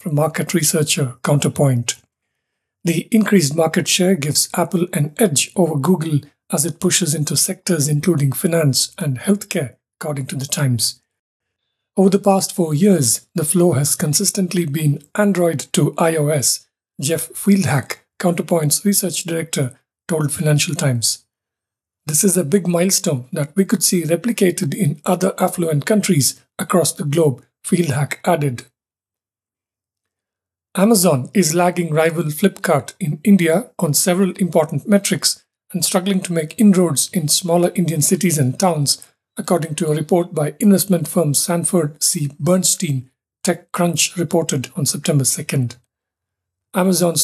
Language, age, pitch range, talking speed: English, 50-69, 145-180 Hz, 135 wpm